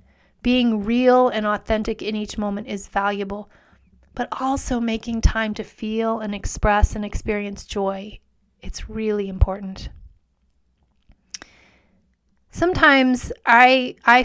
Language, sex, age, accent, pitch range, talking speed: English, female, 30-49, American, 205-240 Hz, 110 wpm